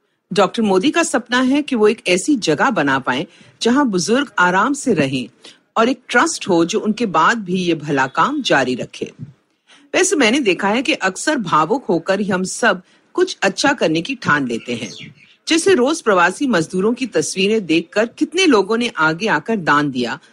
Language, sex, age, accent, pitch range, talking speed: Hindi, female, 50-69, native, 165-270 Hz, 180 wpm